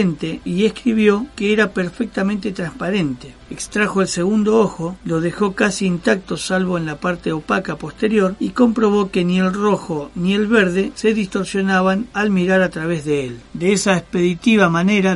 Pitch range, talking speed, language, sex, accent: 175-205 Hz, 160 wpm, Spanish, male, Argentinian